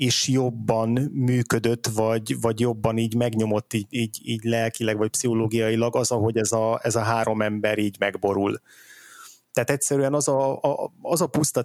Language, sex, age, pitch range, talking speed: Hungarian, male, 20-39, 115-125 Hz, 165 wpm